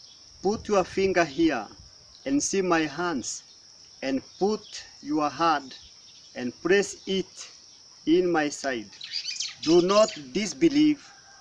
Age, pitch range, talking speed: 40-59, 150-200 Hz, 110 wpm